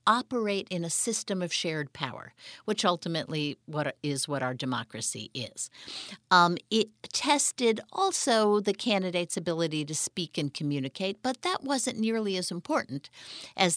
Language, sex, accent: English, female, American